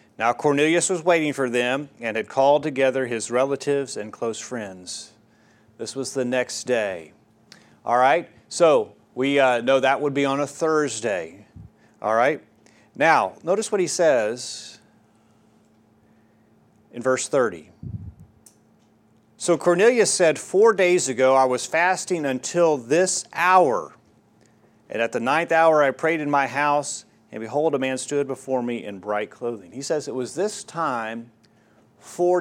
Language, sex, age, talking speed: English, male, 40-59, 150 wpm